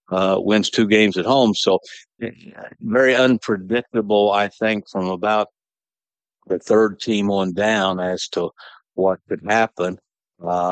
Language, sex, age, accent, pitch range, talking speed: English, male, 60-79, American, 90-100 Hz, 135 wpm